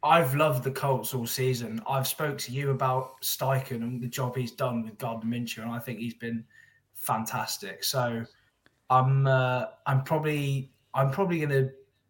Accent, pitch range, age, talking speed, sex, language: British, 120-140 Hz, 20-39, 170 wpm, male, English